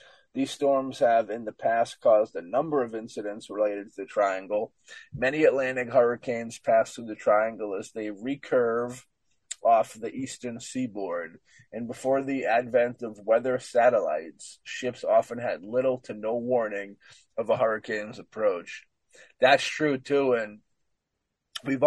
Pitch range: 110-130 Hz